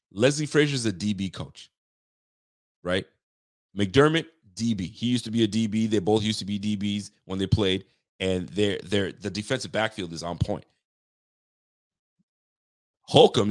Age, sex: 30-49, male